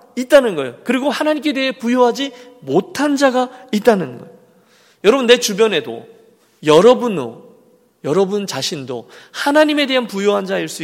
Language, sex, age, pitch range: Korean, male, 40-59, 160-240 Hz